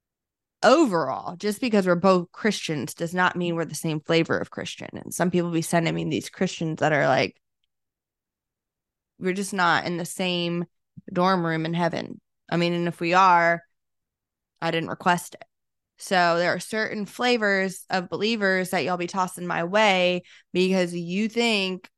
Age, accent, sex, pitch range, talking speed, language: 20-39, American, female, 180-235 Hz, 170 wpm, English